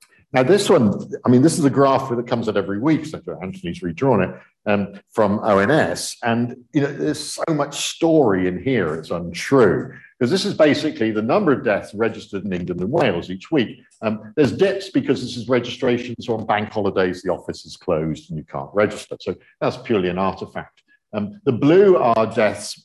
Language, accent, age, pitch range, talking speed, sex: English, British, 50-69, 100-140 Hz, 195 wpm, male